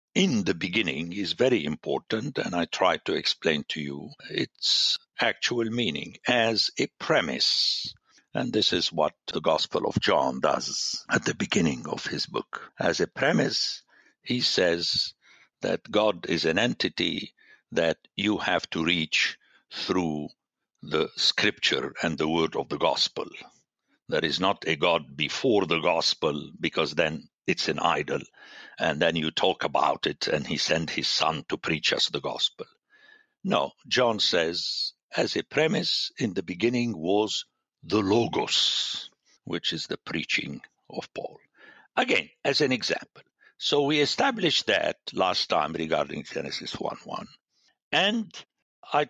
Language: English